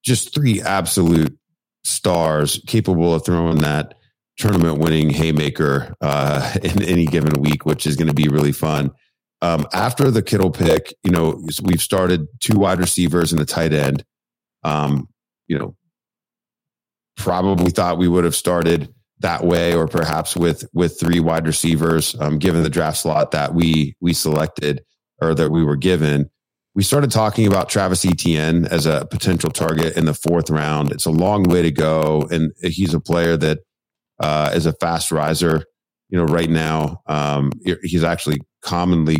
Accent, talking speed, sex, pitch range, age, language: American, 165 wpm, male, 75-90 Hz, 40-59, English